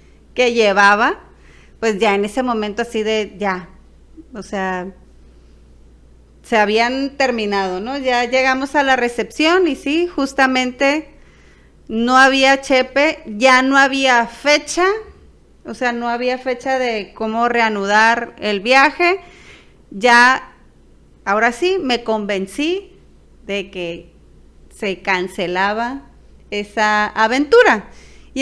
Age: 30-49